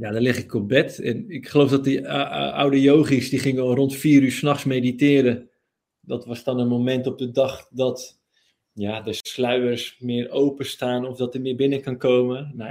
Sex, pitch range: male, 120-140 Hz